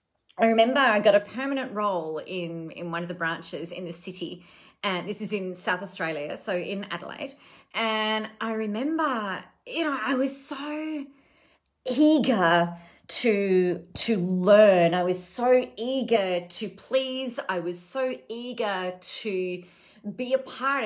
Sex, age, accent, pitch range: female, 30-49, Australian, 180-250 Hz